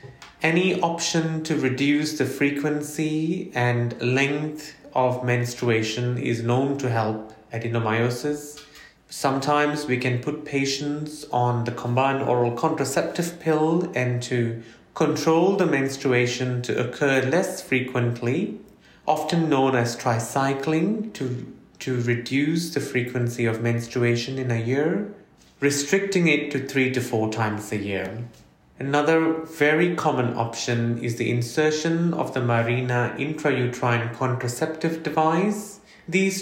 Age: 30-49